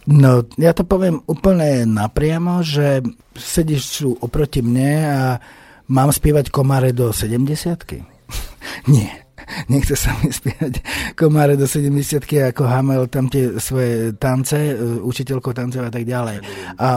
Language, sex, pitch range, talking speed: Slovak, male, 125-150 Hz, 130 wpm